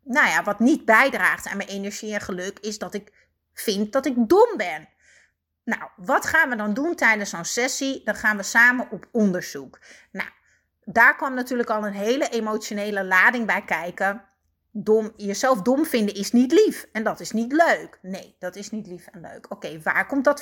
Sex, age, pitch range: female, 30-49, 200-255 Hz